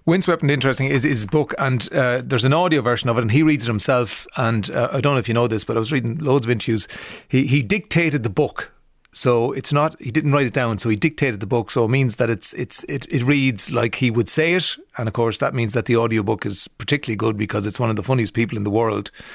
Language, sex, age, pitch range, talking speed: English, male, 30-49, 115-155 Hz, 275 wpm